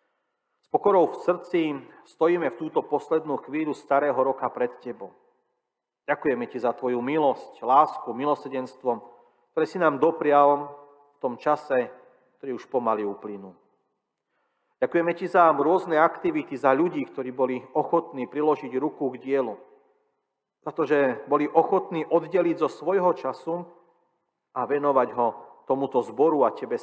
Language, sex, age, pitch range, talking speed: Slovak, male, 40-59, 125-165 Hz, 135 wpm